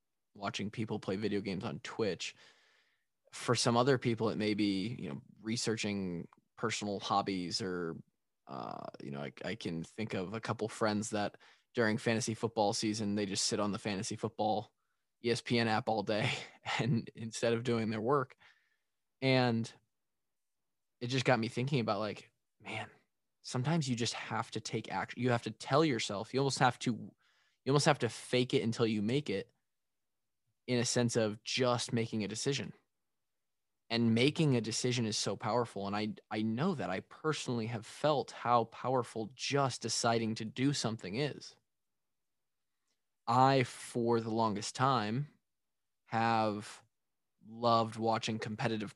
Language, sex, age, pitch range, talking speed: English, male, 20-39, 105-120 Hz, 160 wpm